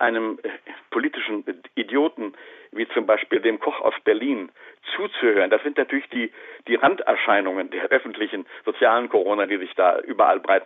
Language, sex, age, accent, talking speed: German, male, 60-79, German, 145 wpm